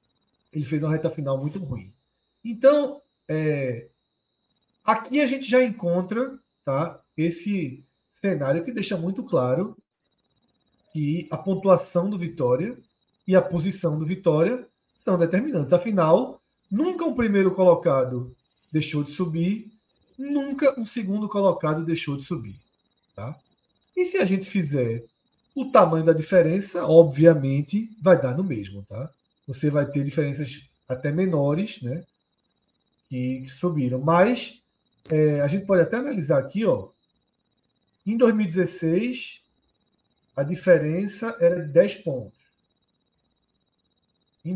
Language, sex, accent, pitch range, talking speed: Portuguese, male, Brazilian, 150-195 Hz, 120 wpm